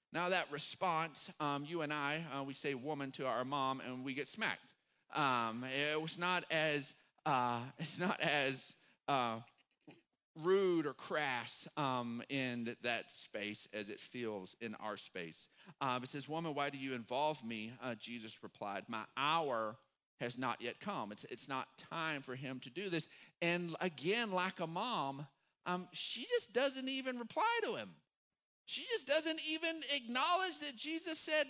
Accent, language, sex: American, English, male